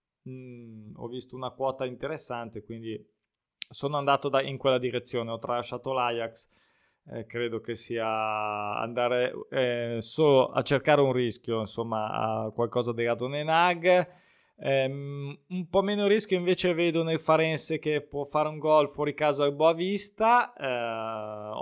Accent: native